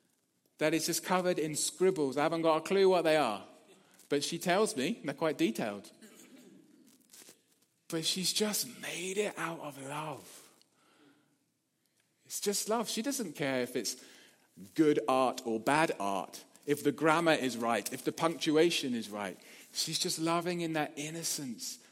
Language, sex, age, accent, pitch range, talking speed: English, male, 30-49, British, 145-205 Hz, 160 wpm